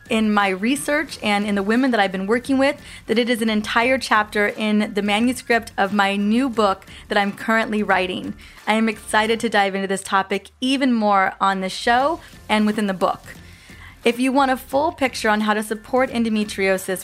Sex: female